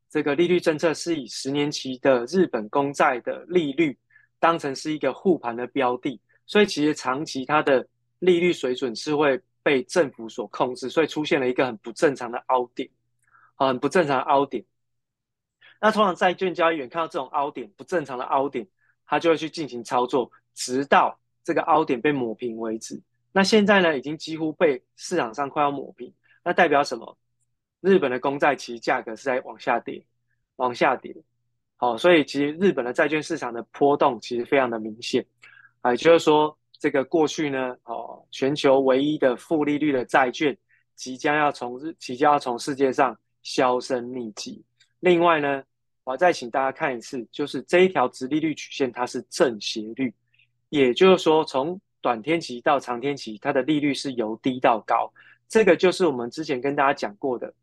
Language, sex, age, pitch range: Chinese, male, 20-39, 125-160 Hz